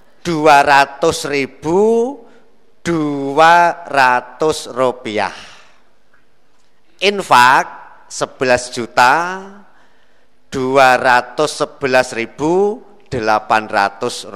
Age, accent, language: 50-69, native, Indonesian